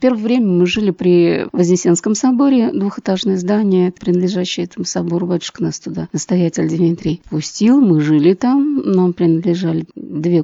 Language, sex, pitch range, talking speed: Russian, female, 175-210 Hz, 140 wpm